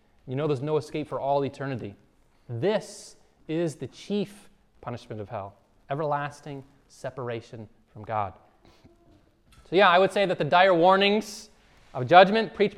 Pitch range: 130-195 Hz